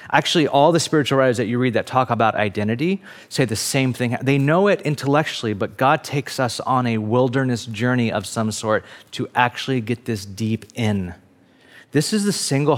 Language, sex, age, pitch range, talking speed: English, male, 30-49, 110-140 Hz, 195 wpm